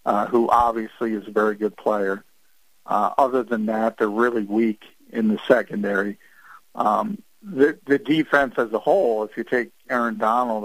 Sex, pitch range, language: male, 110-130 Hz, English